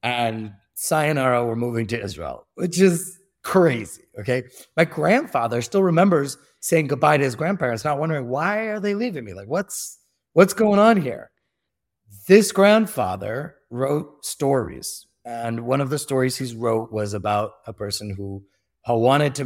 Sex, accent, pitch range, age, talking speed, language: male, American, 115-170 Hz, 30-49, 155 wpm, English